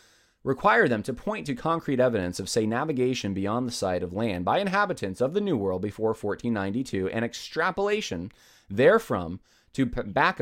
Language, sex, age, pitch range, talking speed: English, male, 30-49, 105-150 Hz, 165 wpm